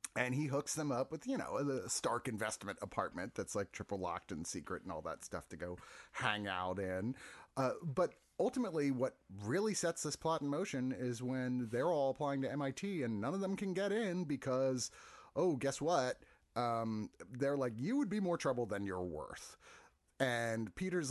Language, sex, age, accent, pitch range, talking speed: English, male, 30-49, American, 115-190 Hz, 195 wpm